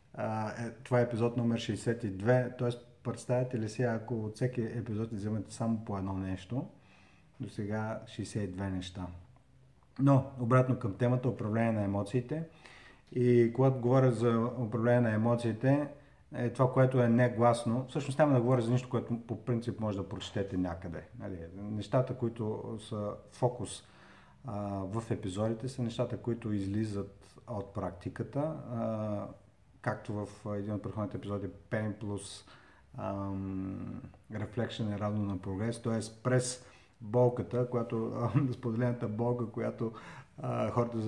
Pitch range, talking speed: 105-125 Hz, 130 wpm